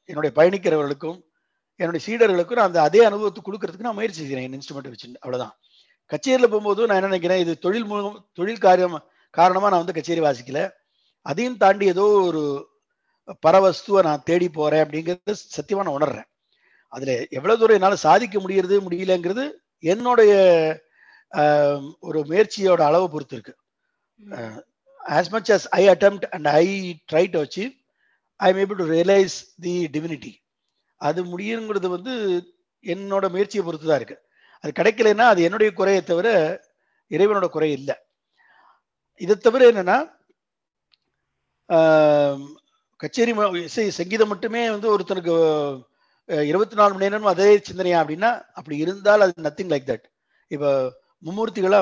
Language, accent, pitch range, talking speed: Tamil, native, 160-215 Hz, 125 wpm